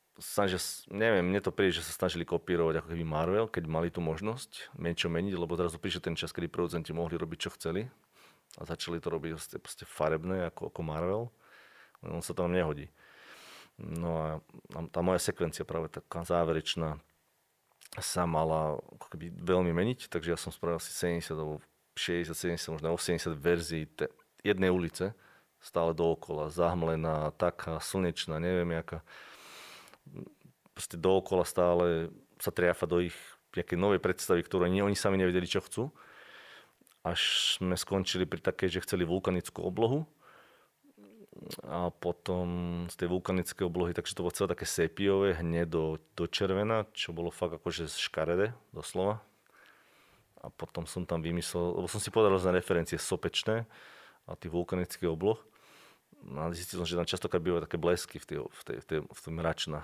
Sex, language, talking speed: male, Slovak, 150 wpm